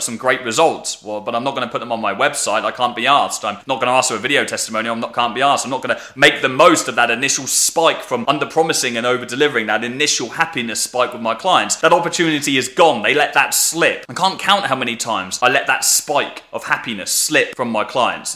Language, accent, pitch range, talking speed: English, British, 120-165 Hz, 260 wpm